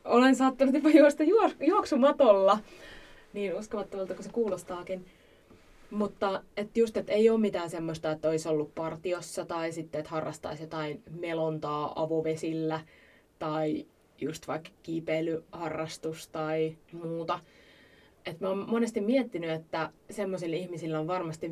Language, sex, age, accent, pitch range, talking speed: Finnish, female, 20-39, native, 160-200 Hz, 130 wpm